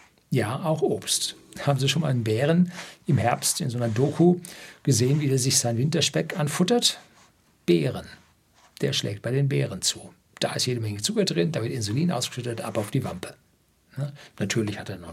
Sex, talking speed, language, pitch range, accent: male, 190 wpm, German, 115-155 Hz, German